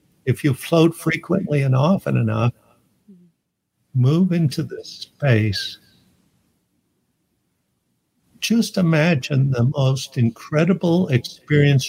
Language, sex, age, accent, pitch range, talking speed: English, male, 60-79, American, 125-180 Hz, 85 wpm